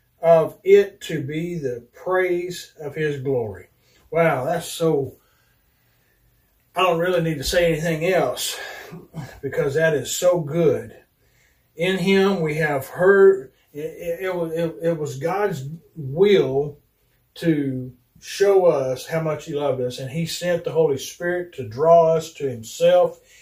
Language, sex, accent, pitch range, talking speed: English, male, American, 140-180 Hz, 145 wpm